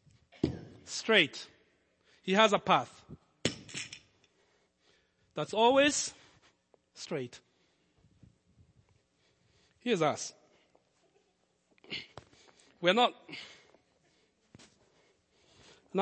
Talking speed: 50 wpm